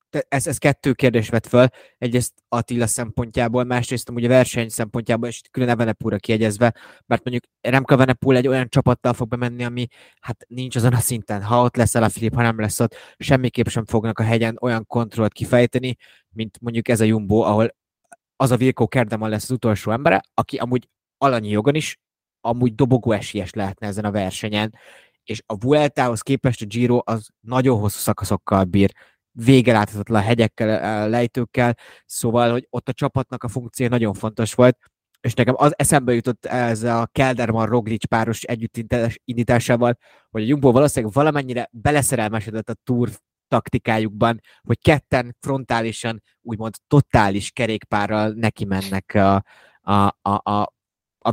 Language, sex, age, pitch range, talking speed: Hungarian, male, 20-39, 110-125 Hz, 150 wpm